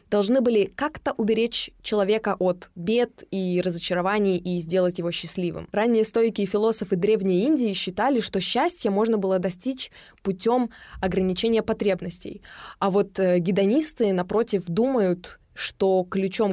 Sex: female